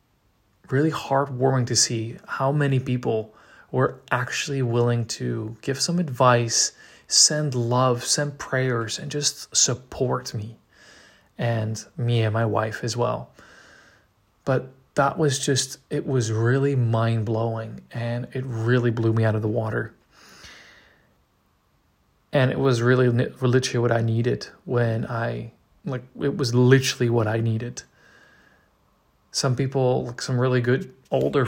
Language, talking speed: English, 130 wpm